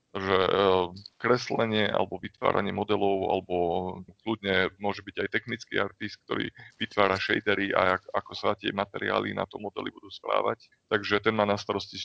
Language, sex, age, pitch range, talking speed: Slovak, male, 20-39, 95-110 Hz, 155 wpm